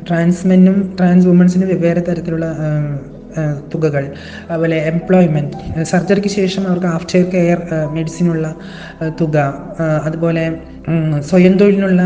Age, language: 20-39, Malayalam